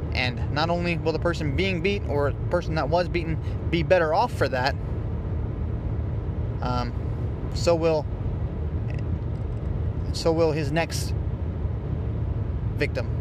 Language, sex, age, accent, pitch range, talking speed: English, male, 20-39, American, 100-115 Hz, 125 wpm